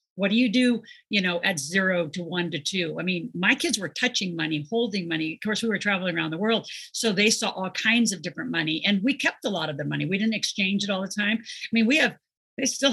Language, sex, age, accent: English, female, 50-69, American